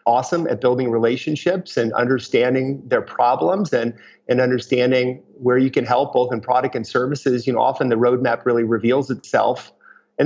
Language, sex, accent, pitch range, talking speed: English, male, American, 125-135 Hz, 170 wpm